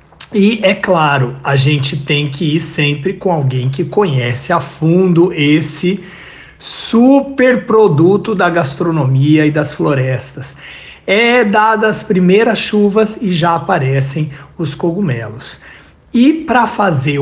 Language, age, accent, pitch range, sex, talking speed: Portuguese, 60-79, Brazilian, 145-200 Hz, male, 125 wpm